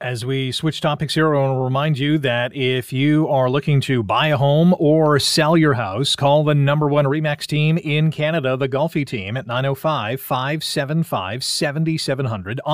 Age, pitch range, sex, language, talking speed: 30-49, 125-150 Hz, male, English, 170 wpm